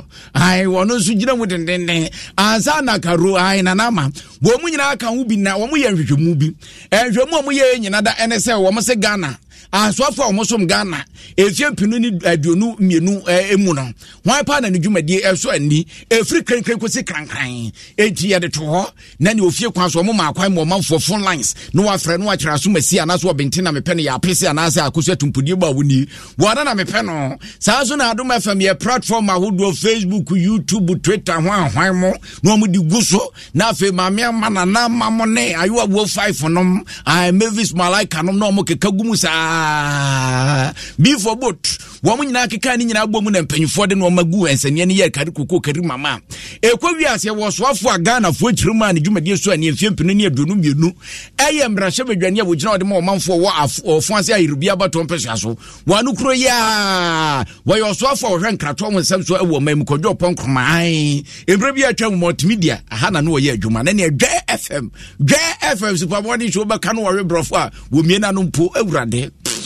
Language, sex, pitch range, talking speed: English, male, 165-215 Hz, 105 wpm